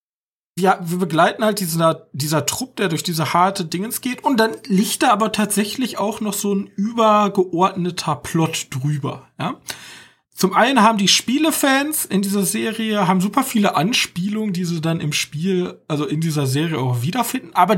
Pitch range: 155-215 Hz